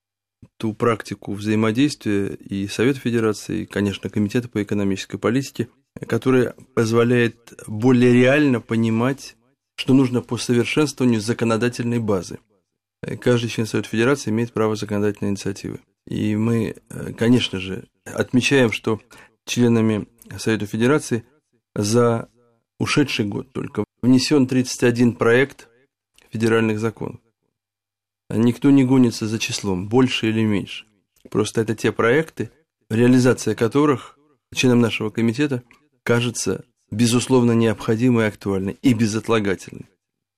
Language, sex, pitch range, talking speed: Russian, male, 110-125 Hz, 105 wpm